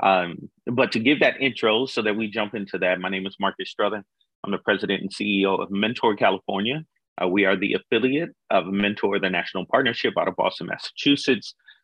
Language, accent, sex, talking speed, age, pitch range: English, American, male, 200 wpm, 30-49, 95-115 Hz